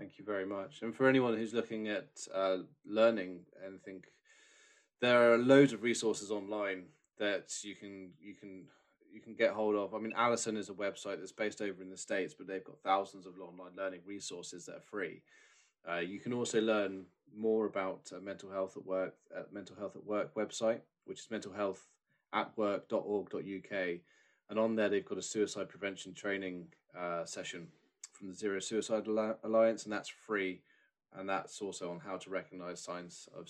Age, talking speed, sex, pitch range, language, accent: 20-39, 185 wpm, male, 95-115 Hz, English, British